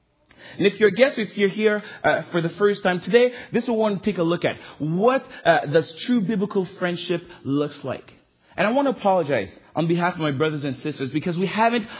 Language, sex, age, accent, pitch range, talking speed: English, male, 40-59, American, 155-205 Hz, 215 wpm